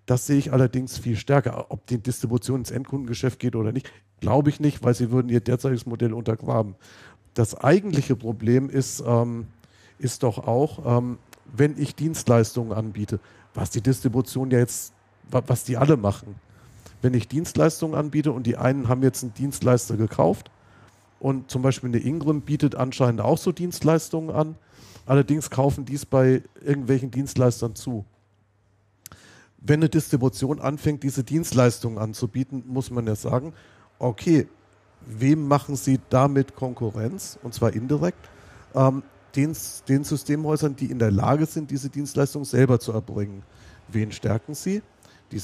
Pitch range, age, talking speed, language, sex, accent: 115-140 Hz, 50-69, 150 wpm, German, male, German